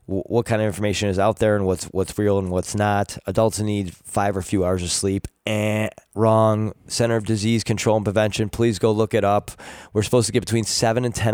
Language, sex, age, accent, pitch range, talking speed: English, male, 20-39, American, 95-115 Hz, 235 wpm